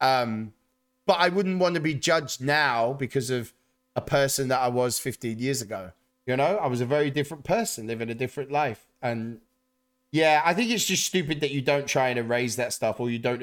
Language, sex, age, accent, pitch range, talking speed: English, male, 20-39, British, 125-170 Hz, 220 wpm